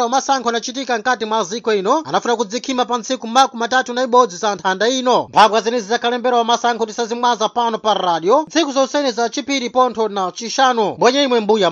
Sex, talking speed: male, 185 wpm